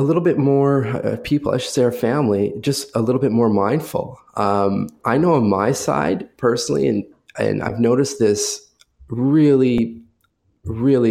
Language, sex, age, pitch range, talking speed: English, male, 20-39, 100-120 Hz, 160 wpm